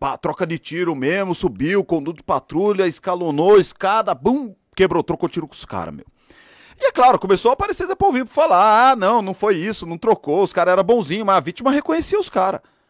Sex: male